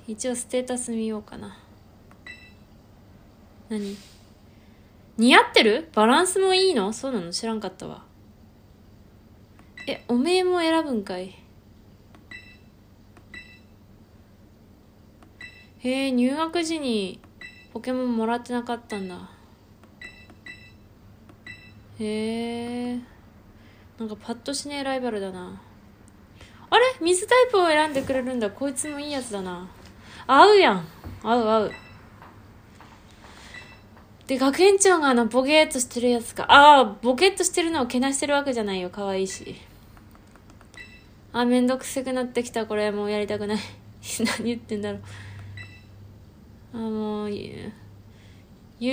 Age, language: 20-39, Japanese